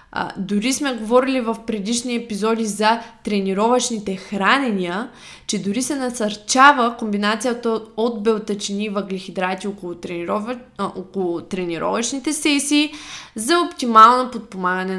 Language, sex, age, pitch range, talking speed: Bulgarian, female, 20-39, 195-245 Hz, 95 wpm